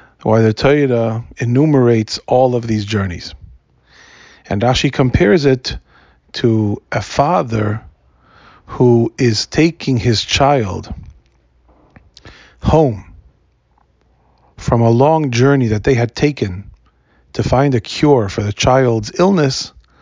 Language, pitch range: English, 105-135 Hz